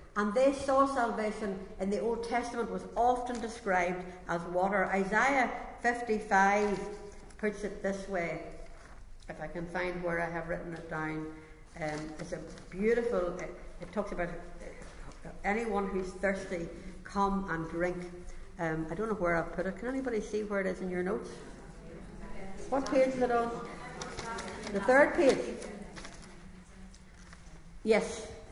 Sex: female